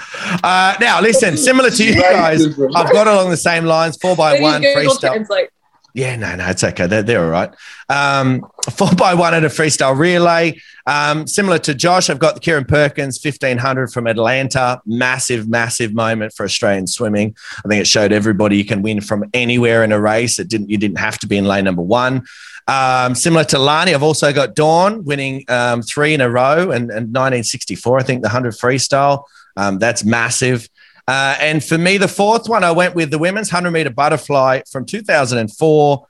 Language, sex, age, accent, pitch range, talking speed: English, male, 30-49, Australian, 115-155 Hz, 195 wpm